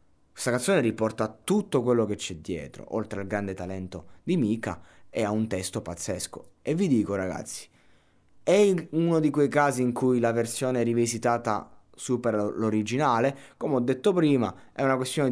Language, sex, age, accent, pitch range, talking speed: Italian, male, 20-39, native, 95-130 Hz, 165 wpm